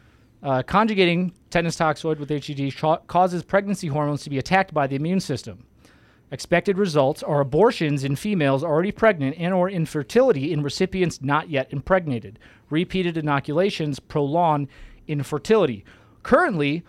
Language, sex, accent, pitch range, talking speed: English, male, American, 140-180 Hz, 130 wpm